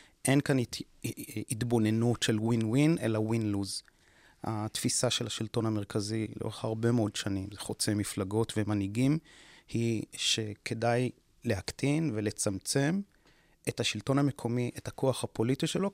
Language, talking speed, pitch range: Hebrew, 125 wpm, 110-140 Hz